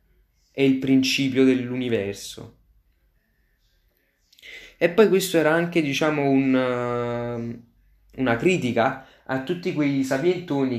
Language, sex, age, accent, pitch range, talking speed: Italian, male, 20-39, native, 115-145 Hz, 95 wpm